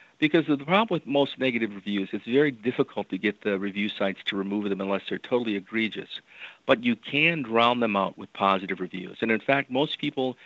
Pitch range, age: 105-135 Hz, 50-69